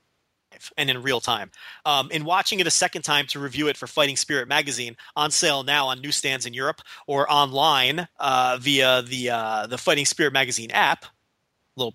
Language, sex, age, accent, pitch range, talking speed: English, male, 30-49, American, 130-165 Hz, 185 wpm